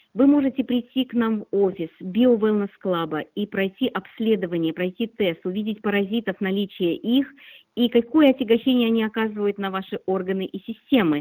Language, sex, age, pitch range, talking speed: Russian, female, 40-59, 195-245 Hz, 155 wpm